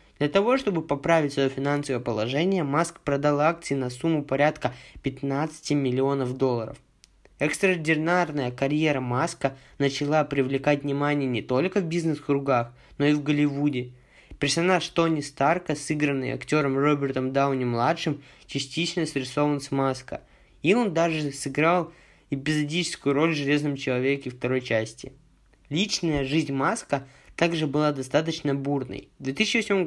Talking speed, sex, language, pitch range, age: 125 wpm, male, Russian, 135-160 Hz, 20-39